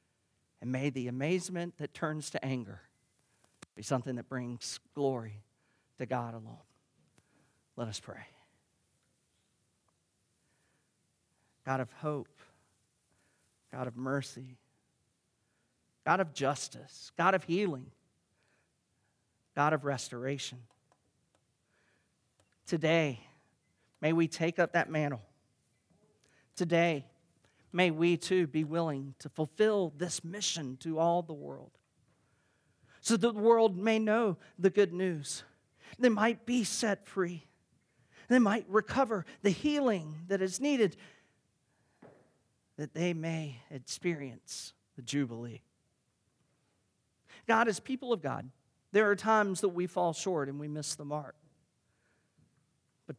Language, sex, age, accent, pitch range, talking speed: English, male, 40-59, American, 130-180 Hz, 115 wpm